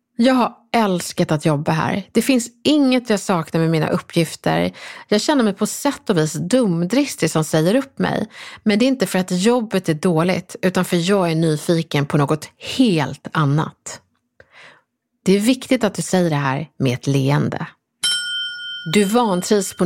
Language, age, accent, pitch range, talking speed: English, 30-49, Swedish, 165-245 Hz, 175 wpm